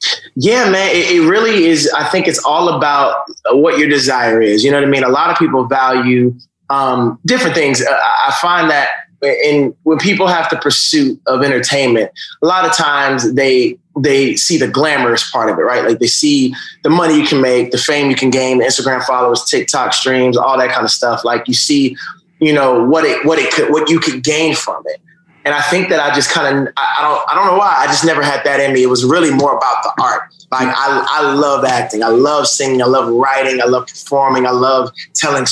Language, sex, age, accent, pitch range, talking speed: English, male, 20-39, American, 130-180 Hz, 225 wpm